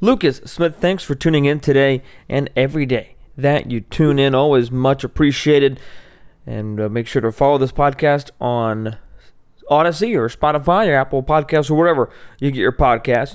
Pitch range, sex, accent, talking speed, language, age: 115-140 Hz, male, American, 170 wpm, English, 20-39